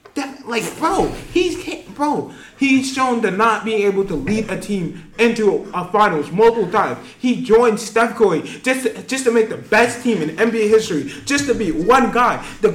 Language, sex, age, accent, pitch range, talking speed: English, male, 20-39, American, 195-250 Hz, 195 wpm